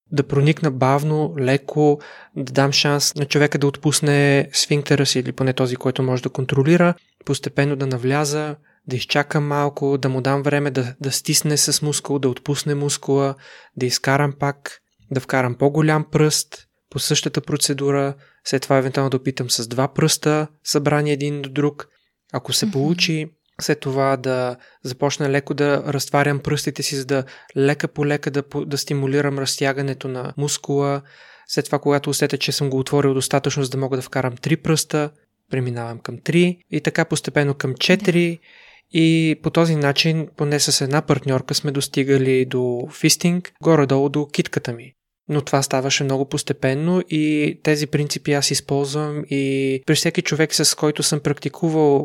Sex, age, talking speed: male, 20-39, 165 wpm